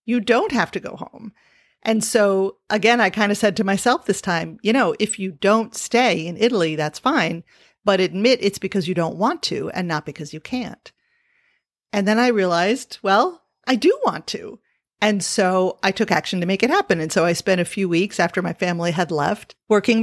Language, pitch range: English, 180-245 Hz